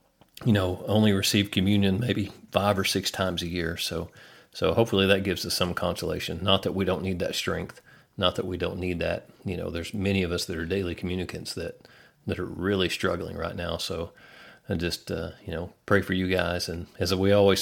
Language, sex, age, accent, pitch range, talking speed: English, male, 40-59, American, 85-95 Hz, 220 wpm